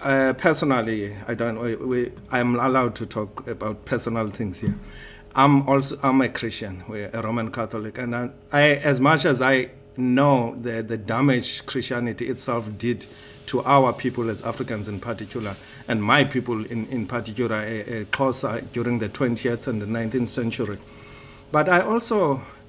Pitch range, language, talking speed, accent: 115-135 Hz, English, 160 wpm, South African